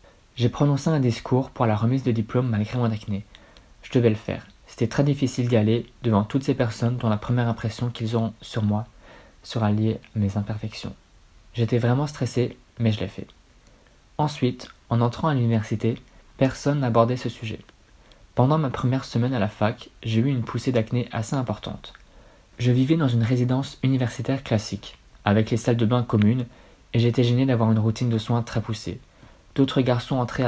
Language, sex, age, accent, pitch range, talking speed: French, male, 20-39, French, 110-125 Hz, 185 wpm